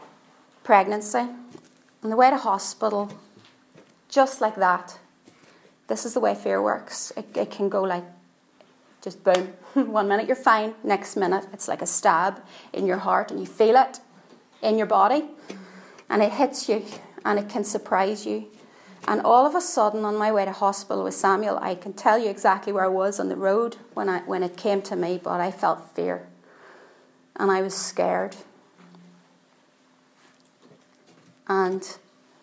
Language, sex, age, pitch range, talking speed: English, female, 30-49, 190-230 Hz, 165 wpm